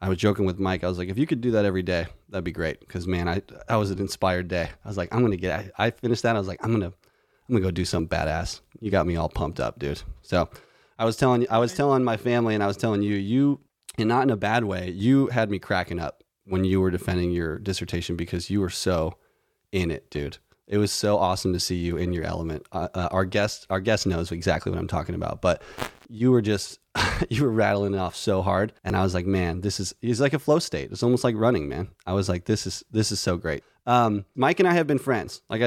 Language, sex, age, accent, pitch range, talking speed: English, male, 30-49, American, 90-115 Hz, 270 wpm